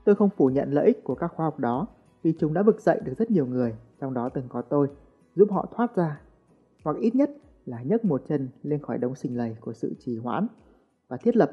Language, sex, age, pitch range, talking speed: Vietnamese, male, 20-39, 130-185 Hz, 250 wpm